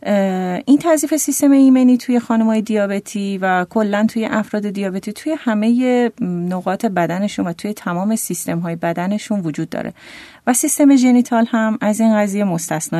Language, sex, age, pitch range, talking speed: Persian, female, 30-49, 185-245 Hz, 145 wpm